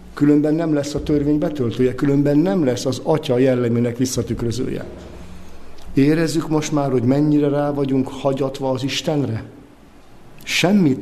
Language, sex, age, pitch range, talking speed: Hungarian, male, 50-69, 115-140 Hz, 130 wpm